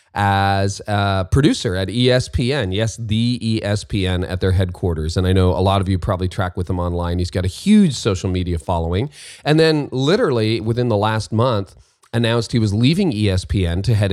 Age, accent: 30-49, American